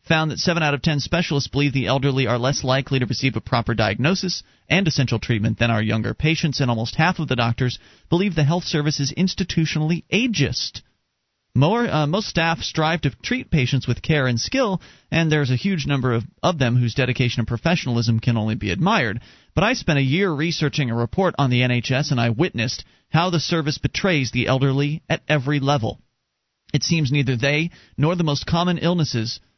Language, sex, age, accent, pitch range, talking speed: English, male, 40-59, American, 120-165 Hz, 195 wpm